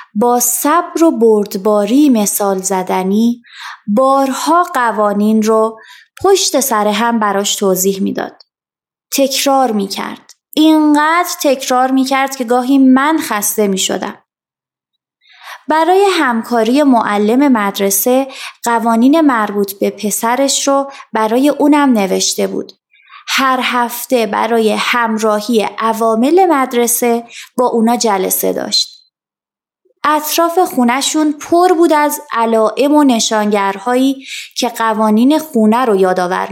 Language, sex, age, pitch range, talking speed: Persian, female, 20-39, 210-275 Hz, 100 wpm